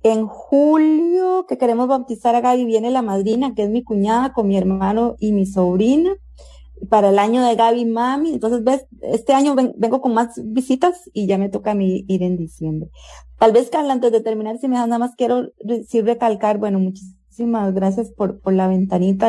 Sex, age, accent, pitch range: female, 30-49, Colombian, 195-235 Hz